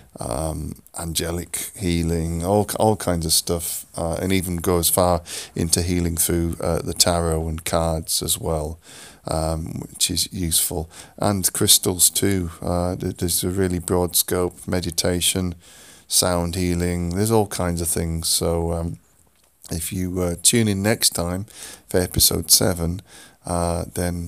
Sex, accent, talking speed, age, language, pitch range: male, British, 145 wpm, 30-49, English, 85-90 Hz